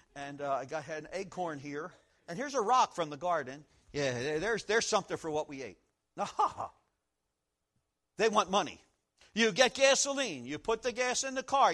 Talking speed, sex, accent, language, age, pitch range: 190 wpm, male, American, English, 50-69, 180-275 Hz